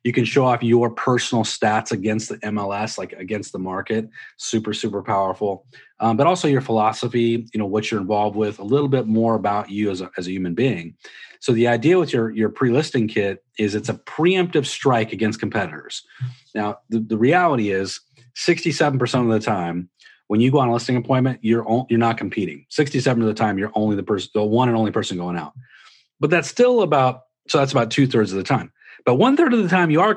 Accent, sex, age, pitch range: American, male, 30-49, 110-130 Hz